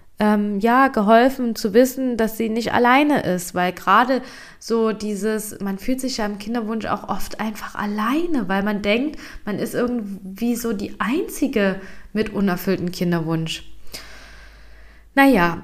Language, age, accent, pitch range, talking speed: German, 20-39, German, 190-225 Hz, 140 wpm